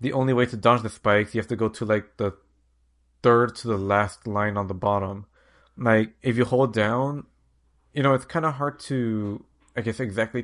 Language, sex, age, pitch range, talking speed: English, male, 30-49, 100-130 Hz, 215 wpm